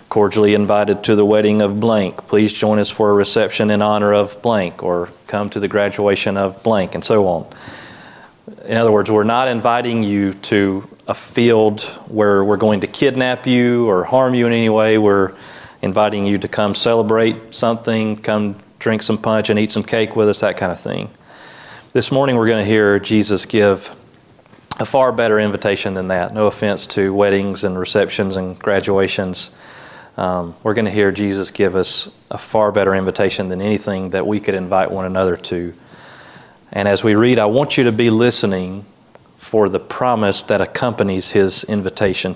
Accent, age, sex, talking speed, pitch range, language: American, 40-59, male, 185 wpm, 100-110 Hz, English